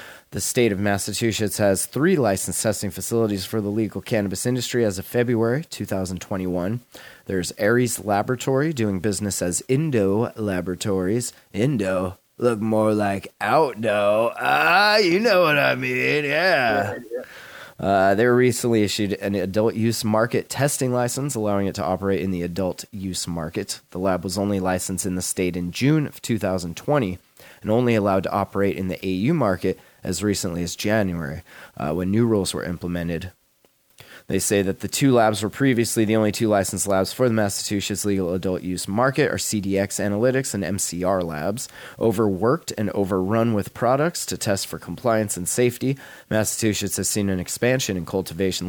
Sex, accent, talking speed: male, American, 165 wpm